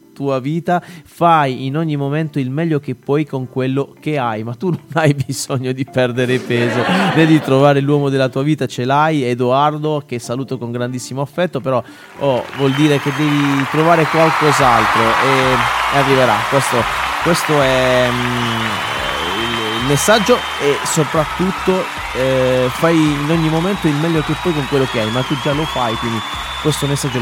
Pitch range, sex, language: 130-160 Hz, male, Italian